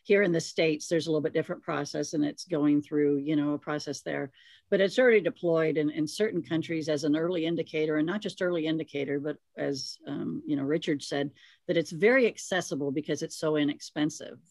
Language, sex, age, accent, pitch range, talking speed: English, female, 50-69, American, 160-190 Hz, 210 wpm